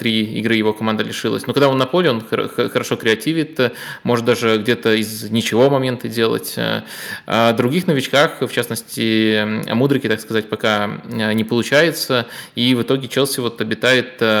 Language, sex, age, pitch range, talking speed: Russian, male, 20-39, 110-125 Hz, 155 wpm